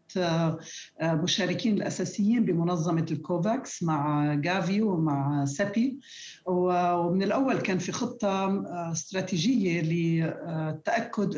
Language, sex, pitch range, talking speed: Arabic, female, 175-220 Hz, 80 wpm